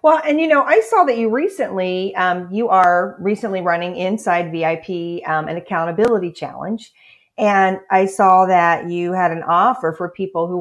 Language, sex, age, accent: English, female, 40-59, American